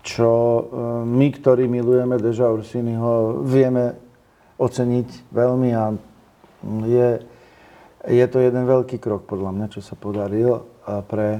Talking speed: 115 wpm